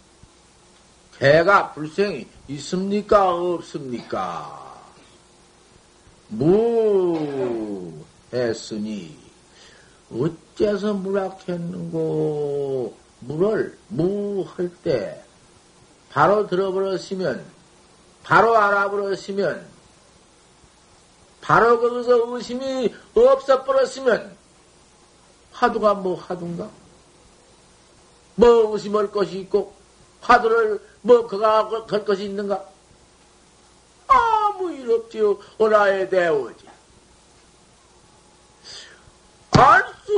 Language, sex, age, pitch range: Korean, male, 50-69, 175-230 Hz